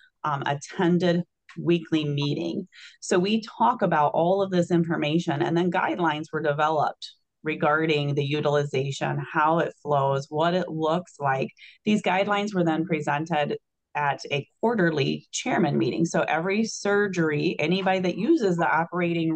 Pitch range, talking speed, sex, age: 155-190 Hz, 140 wpm, female, 30-49